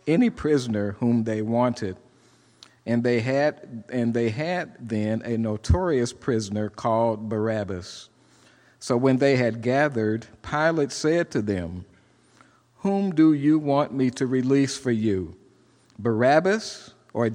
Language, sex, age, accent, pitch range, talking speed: English, male, 50-69, American, 110-135 Hz, 120 wpm